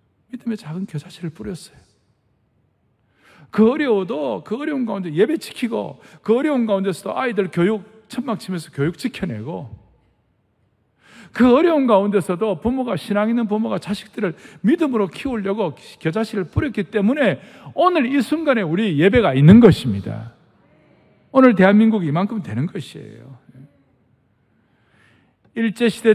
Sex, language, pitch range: male, Korean, 120-200 Hz